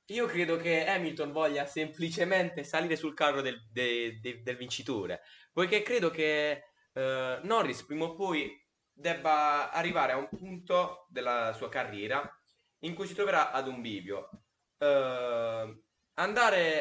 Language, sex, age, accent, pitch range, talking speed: Italian, male, 20-39, native, 110-160 Hz, 140 wpm